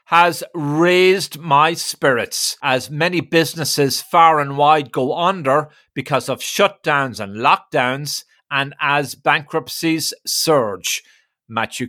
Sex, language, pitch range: male, English, 135-165 Hz